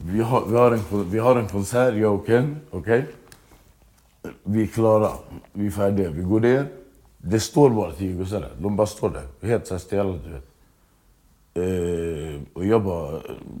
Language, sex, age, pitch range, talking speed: English, male, 60-79, 85-105 Hz, 140 wpm